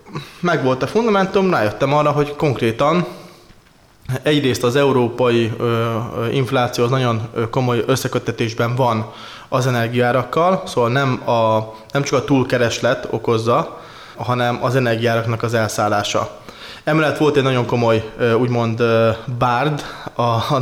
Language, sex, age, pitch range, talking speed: Hungarian, male, 20-39, 115-135 Hz, 115 wpm